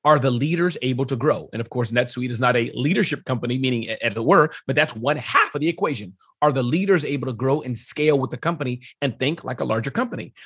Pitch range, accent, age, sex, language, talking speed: 125-170 Hz, American, 30-49, male, English, 245 wpm